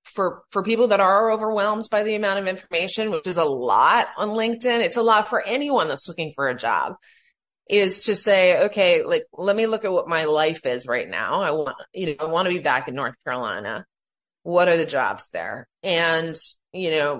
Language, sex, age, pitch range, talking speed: English, female, 30-49, 150-220 Hz, 215 wpm